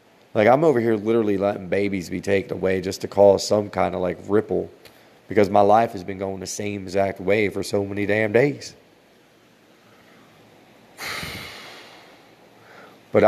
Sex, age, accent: male, 30-49, American